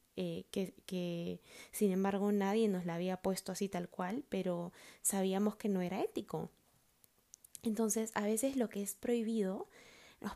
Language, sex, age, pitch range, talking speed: Spanish, female, 20-39, 190-215 Hz, 155 wpm